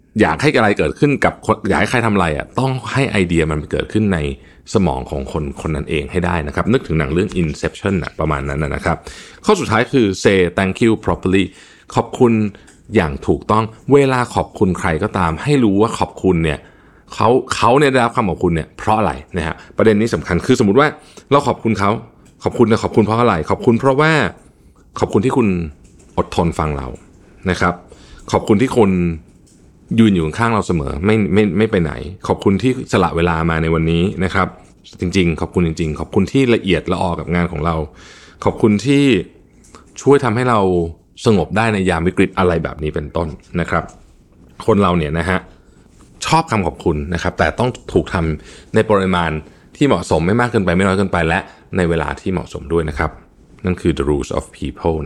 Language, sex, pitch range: Thai, male, 80-105 Hz